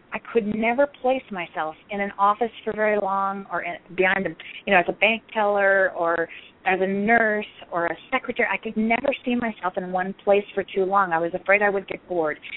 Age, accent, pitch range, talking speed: 30-49, American, 190-225 Hz, 215 wpm